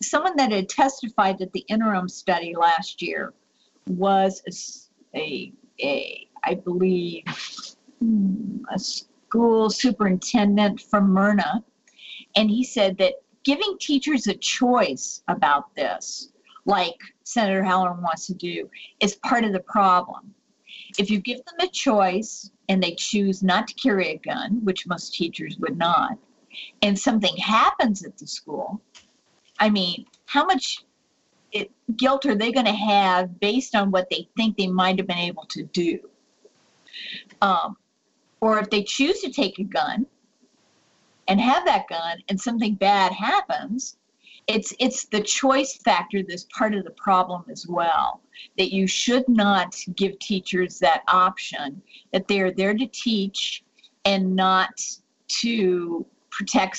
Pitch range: 185-245 Hz